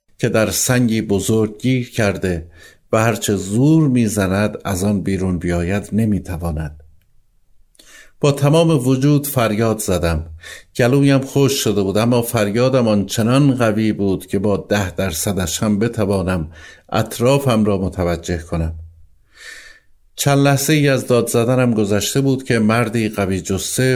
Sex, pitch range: male, 95-130 Hz